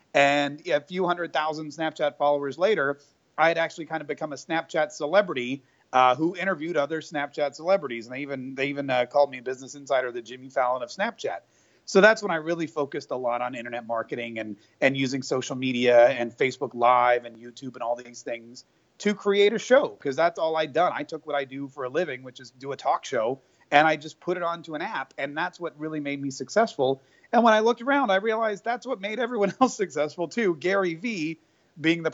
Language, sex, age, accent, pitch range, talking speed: English, male, 30-49, American, 130-170 Hz, 225 wpm